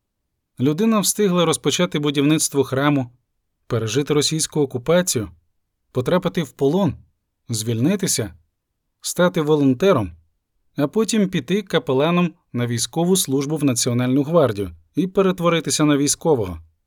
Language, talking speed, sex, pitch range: Ukrainian, 100 wpm, male, 125-175 Hz